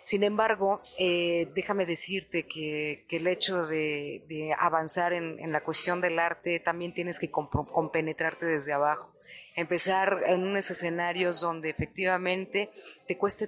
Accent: Mexican